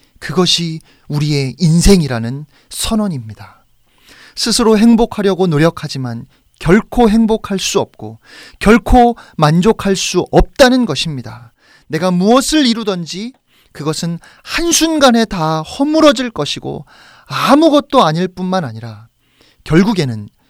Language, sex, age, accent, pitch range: Korean, male, 30-49, native, 115-180 Hz